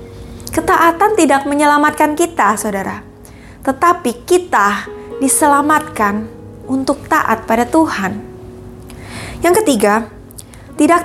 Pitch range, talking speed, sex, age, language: 230-305 Hz, 80 wpm, female, 20-39, Indonesian